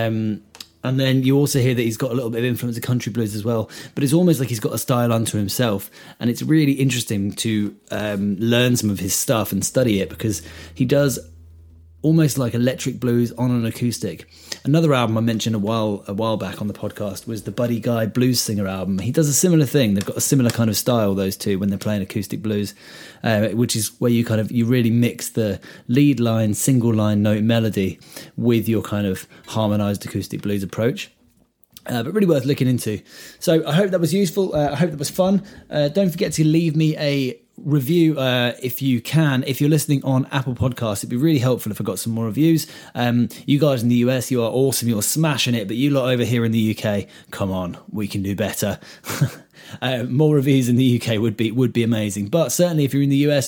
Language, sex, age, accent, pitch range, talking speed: English, male, 30-49, British, 110-135 Hz, 230 wpm